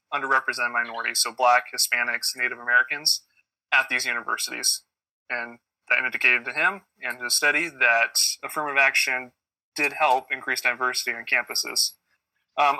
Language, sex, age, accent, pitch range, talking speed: English, male, 20-39, American, 125-150 Hz, 135 wpm